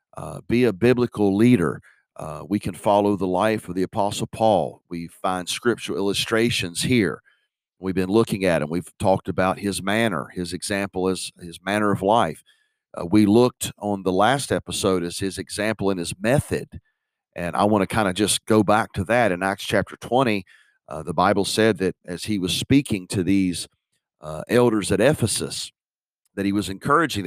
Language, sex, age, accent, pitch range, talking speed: English, male, 40-59, American, 95-115 Hz, 185 wpm